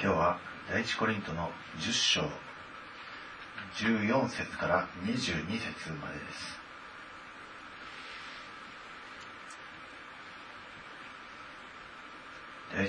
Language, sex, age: Japanese, male, 30-49